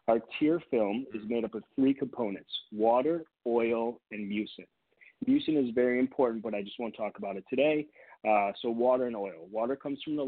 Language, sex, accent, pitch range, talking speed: English, male, American, 110-135 Hz, 200 wpm